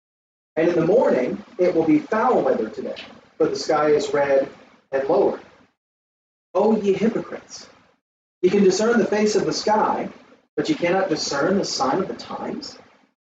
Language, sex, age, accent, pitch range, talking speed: English, male, 40-59, American, 155-225 Hz, 165 wpm